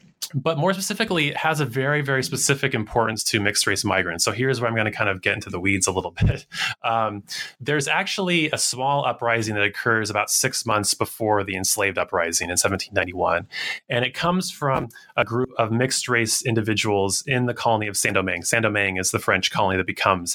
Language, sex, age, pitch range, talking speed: English, male, 30-49, 105-140 Hz, 195 wpm